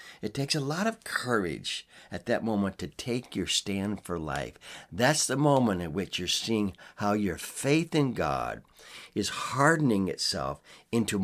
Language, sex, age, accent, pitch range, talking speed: English, male, 60-79, American, 90-115 Hz, 165 wpm